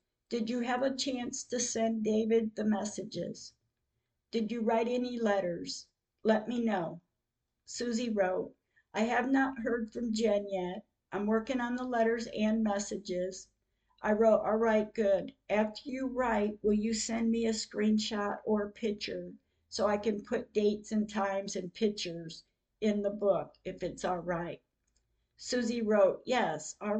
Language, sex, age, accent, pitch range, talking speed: English, female, 50-69, American, 195-235 Hz, 160 wpm